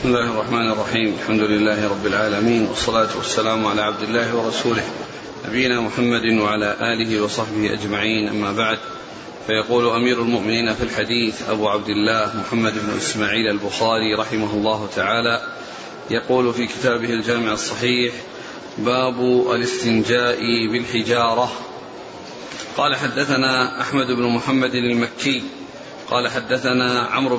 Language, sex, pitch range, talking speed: Arabic, male, 115-140 Hz, 120 wpm